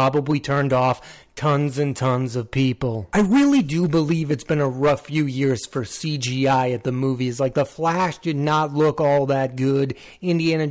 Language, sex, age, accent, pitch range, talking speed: English, male, 30-49, American, 135-165 Hz, 185 wpm